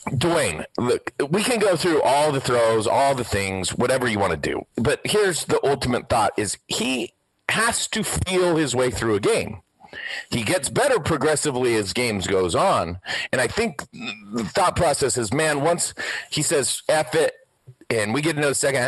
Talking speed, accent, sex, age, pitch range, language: 190 wpm, American, male, 40-59, 125-165 Hz, English